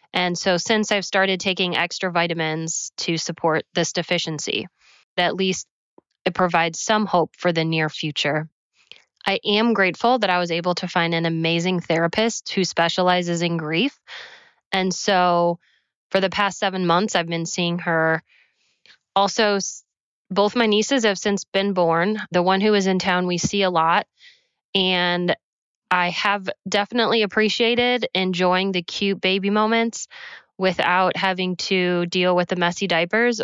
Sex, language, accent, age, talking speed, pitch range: female, English, American, 20-39, 155 wpm, 170-200 Hz